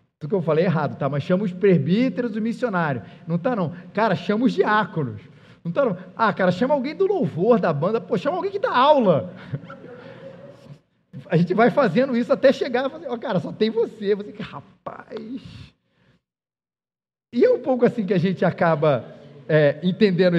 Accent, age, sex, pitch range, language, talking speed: Brazilian, 40-59, male, 180-245 Hz, Portuguese, 190 wpm